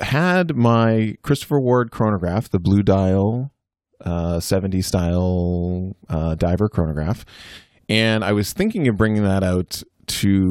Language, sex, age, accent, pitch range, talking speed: English, male, 30-49, American, 95-120 Hz, 130 wpm